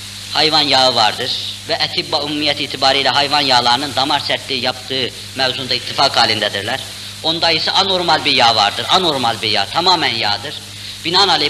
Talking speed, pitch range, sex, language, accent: 135 wpm, 105-150 Hz, female, Turkish, native